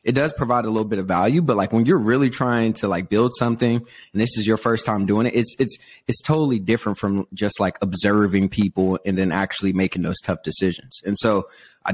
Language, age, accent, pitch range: English, 20-39, American, 100-115 Hz